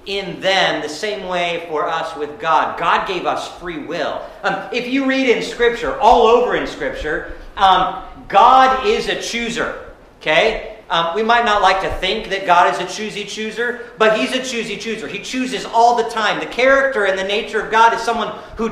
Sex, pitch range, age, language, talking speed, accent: male, 195-240 Hz, 40-59, English, 200 wpm, American